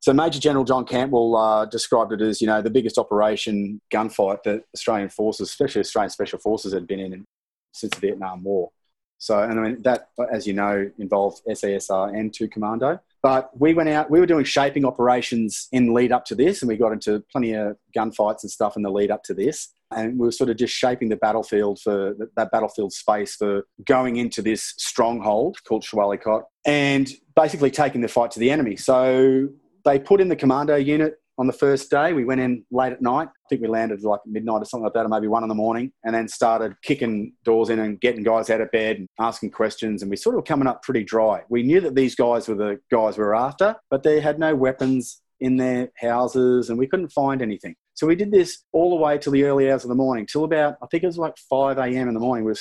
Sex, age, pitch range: male, 30-49, 110-135 Hz